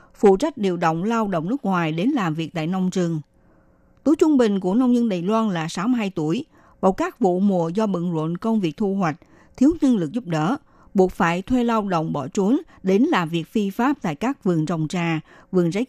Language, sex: Vietnamese, female